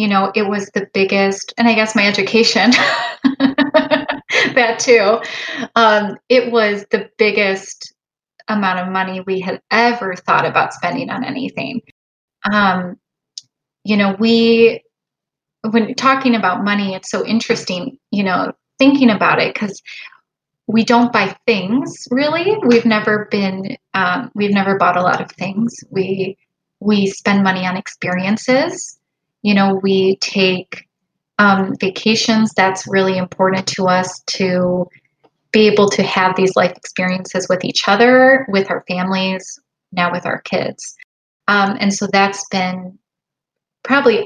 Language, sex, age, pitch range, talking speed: English, female, 20-39, 185-225 Hz, 140 wpm